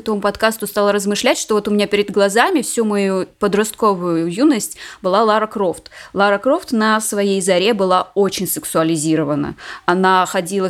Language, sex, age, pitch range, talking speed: Russian, female, 20-39, 195-240 Hz, 150 wpm